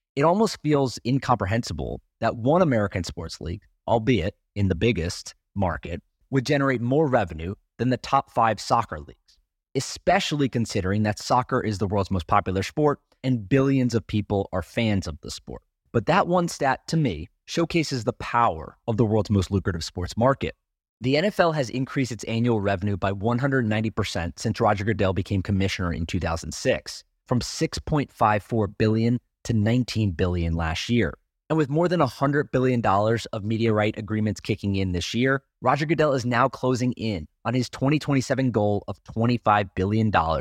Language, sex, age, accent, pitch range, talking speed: English, male, 30-49, American, 100-135 Hz, 165 wpm